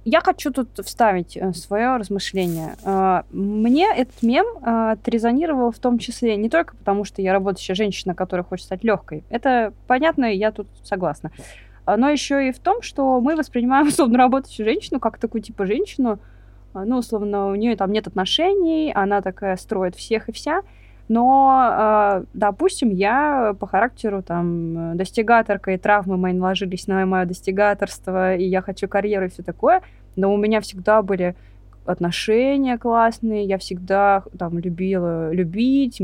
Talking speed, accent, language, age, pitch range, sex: 150 wpm, native, Russian, 20-39, 185-240 Hz, female